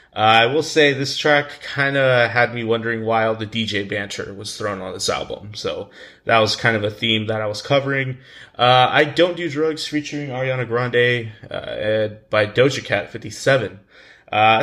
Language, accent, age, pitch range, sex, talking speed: English, American, 20-39, 110-130 Hz, male, 190 wpm